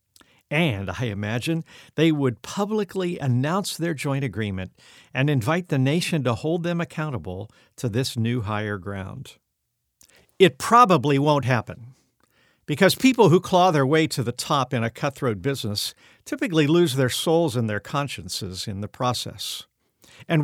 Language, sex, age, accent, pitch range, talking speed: English, male, 50-69, American, 120-170 Hz, 150 wpm